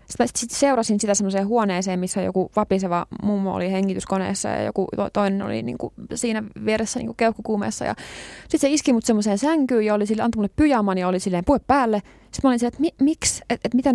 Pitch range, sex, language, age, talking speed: 190-235 Hz, female, Finnish, 20-39, 200 wpm